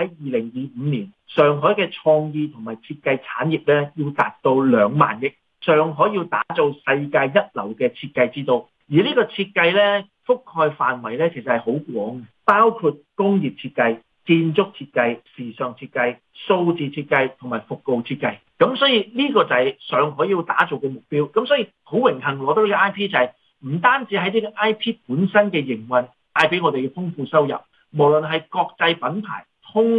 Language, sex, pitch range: Chinese, male, 125-190 Hz